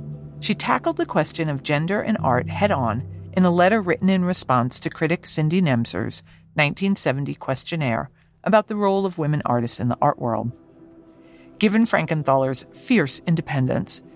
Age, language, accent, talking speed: 50-69, English, American, 150 wpm